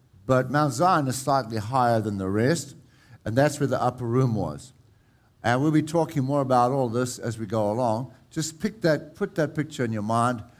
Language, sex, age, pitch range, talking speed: English, male, 60-79, 115-145 Hz, 210 wpm